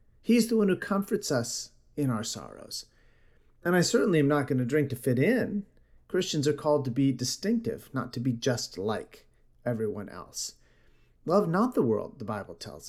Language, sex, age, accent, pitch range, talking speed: English, male, 40-59, American, 115-180 Hz, 180 wpm